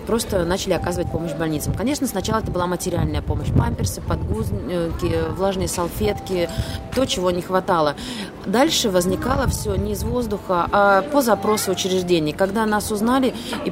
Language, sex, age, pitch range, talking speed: Russian, female, 20-39, 165-200 Hz, 145 wpm